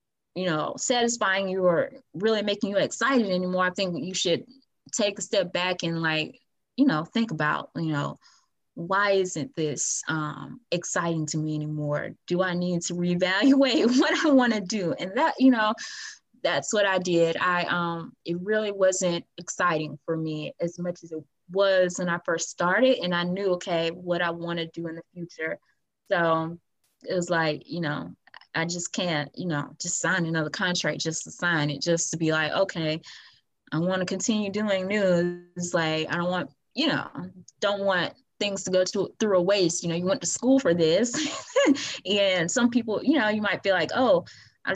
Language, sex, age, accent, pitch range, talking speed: English, female, 20-39, American, 165-200 Hz, 195 wpm